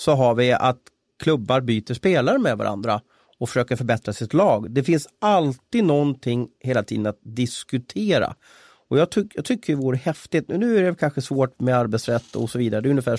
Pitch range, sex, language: 115-140 Hz, male, Swedish